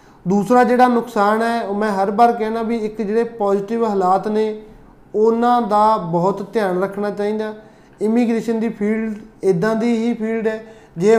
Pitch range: 200-225 Hz